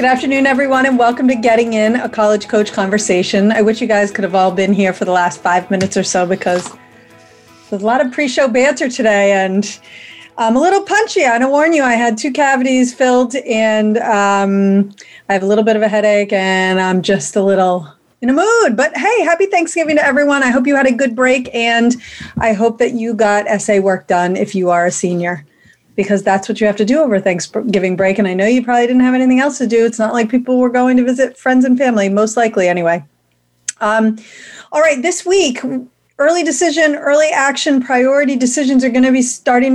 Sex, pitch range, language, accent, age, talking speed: female, 200-265 Hz, English, American, 30-49, 220 wpm